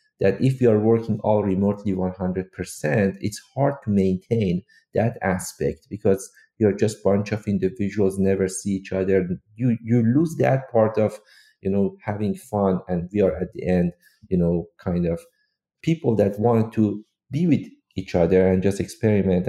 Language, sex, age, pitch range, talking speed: English, male, 50-69, 95-125 Hz, 170 wpm